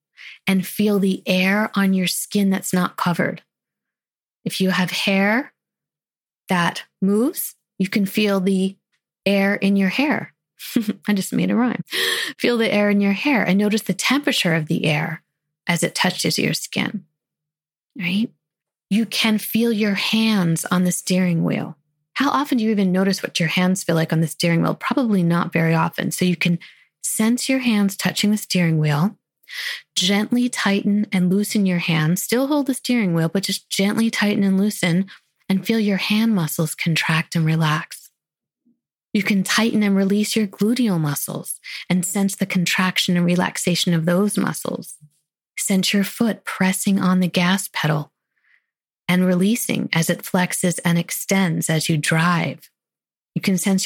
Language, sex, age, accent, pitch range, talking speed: English, female, 30-49, American, 175-210 Hz, 165 wpm